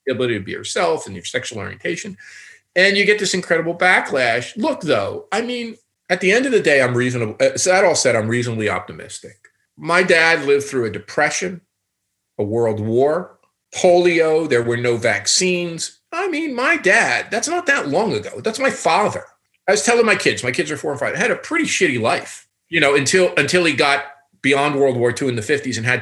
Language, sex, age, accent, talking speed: English, male, 40-59, American, 210 wpm